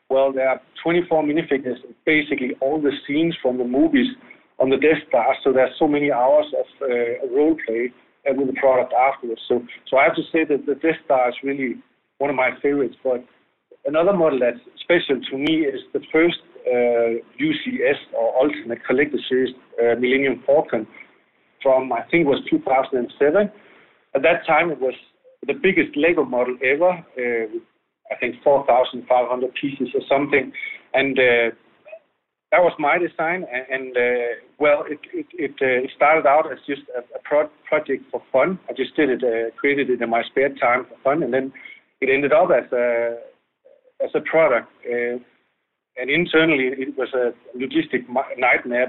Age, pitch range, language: 50-69, 125-170 Hz, English